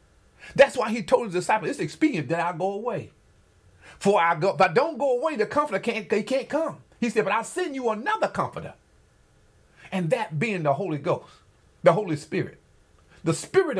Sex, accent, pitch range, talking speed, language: male, American, 170-255 Hz, 195 wpm, English